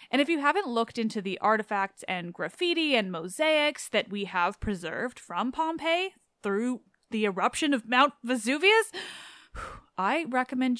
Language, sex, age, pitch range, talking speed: English, female, 20-39, 200-280 Hz, 145 wpm